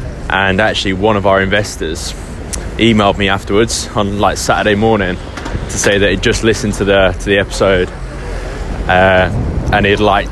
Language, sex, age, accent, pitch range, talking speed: English, male, 20-39, British, 95-105 Hz, 165 wpm